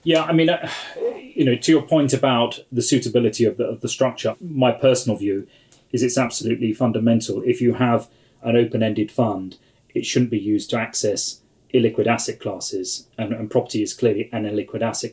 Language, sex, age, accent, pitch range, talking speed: English, male, 30-49, British, 110-125 Hz, 185 wpm